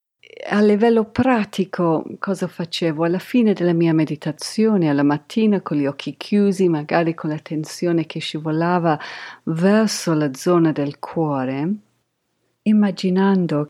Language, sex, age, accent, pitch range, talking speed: Italian, female, 40-59, native, 155-195 Hz, 120 wpm